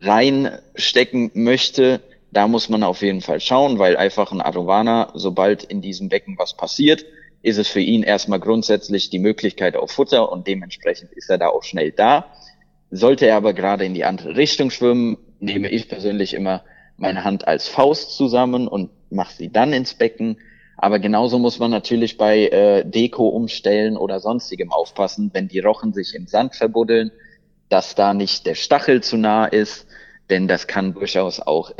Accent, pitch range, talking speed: German, 100-130 Hz, 175 wpm